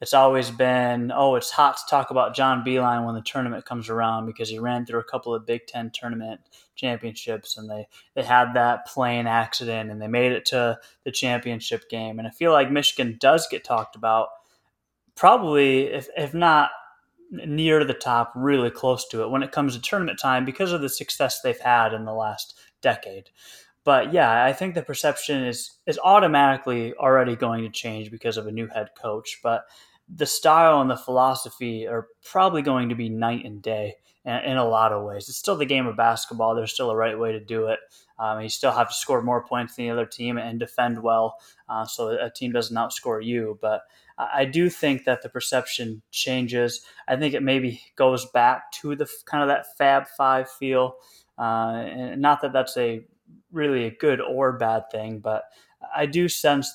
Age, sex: 20-39, male